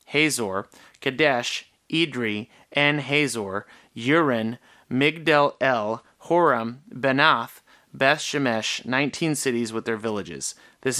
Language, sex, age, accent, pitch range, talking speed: English, male, 30-49, American, 115-145 Hz, 100 wpm